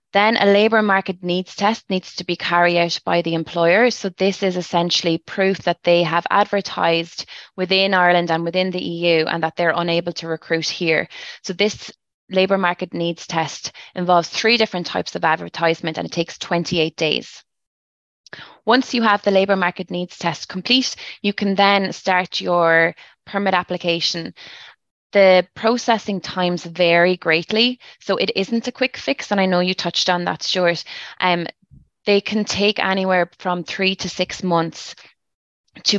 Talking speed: 165 wpm